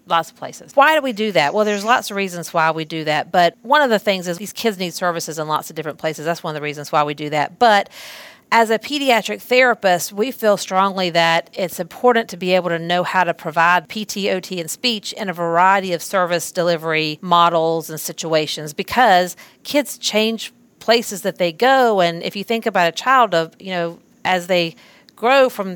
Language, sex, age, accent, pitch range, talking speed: English, female, 40-59, American, 175-230 Hz, 215 wpm